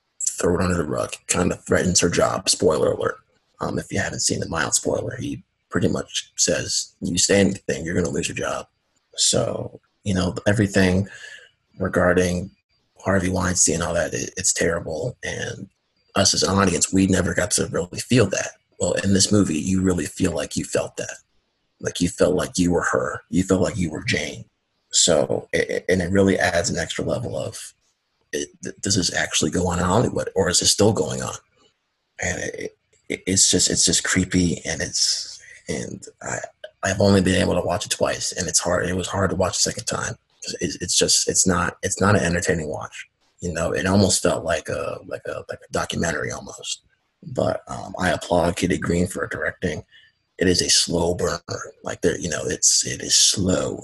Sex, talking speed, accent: male, 190 wpm, American